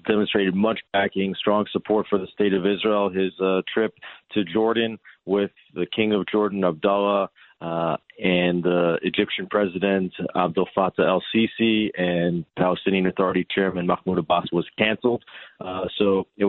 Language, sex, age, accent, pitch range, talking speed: English, male, 40-59, American, 90-105 Hz, 145 wpm